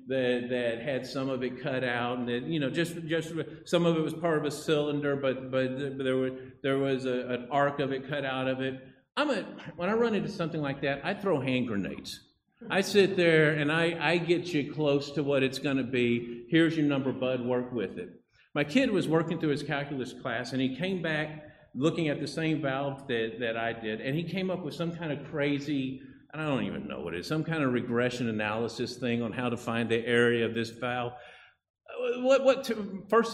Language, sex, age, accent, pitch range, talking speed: English, male, 50-69, American, 130-195 Hz, 225 wpm